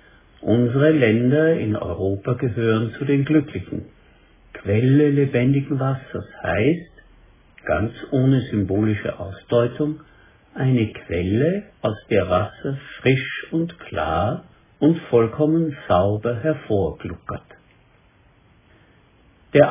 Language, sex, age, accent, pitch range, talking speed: German, male, 60-79, German, 105-140 Hz, 90 wpm